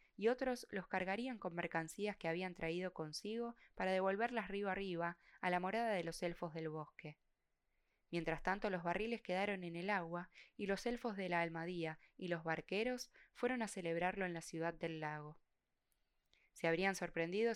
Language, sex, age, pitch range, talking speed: Spanish, female, 10-29, 165-200 Hz, 170 wpm